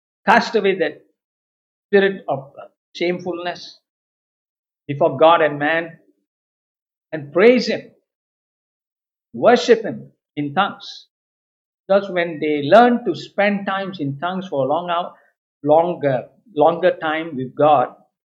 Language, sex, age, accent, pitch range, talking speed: Tamil, male, 50-69, native, 150-195 Hz, 115 wpm